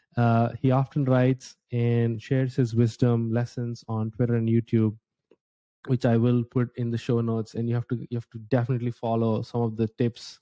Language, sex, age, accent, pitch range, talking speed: English, male, 20-39, Indian, 115-135 Hz, 195 wpm